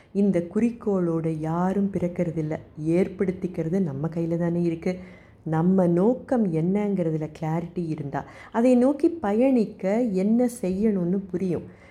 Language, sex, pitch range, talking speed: Tamil, female, 170-220 Hz, 105 wpm